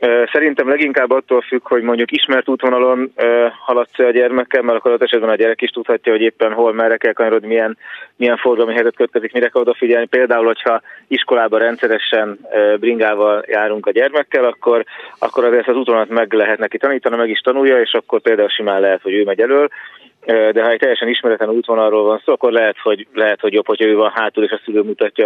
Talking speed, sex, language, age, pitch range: 205 wpm, male, Hungarian, 30-49, 110-130 Hz